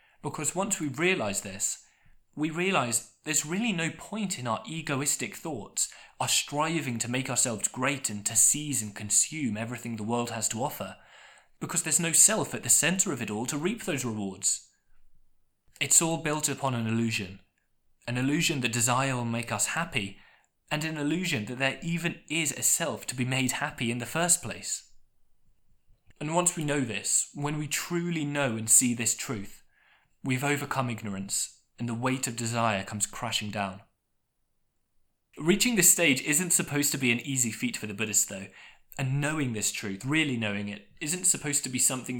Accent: British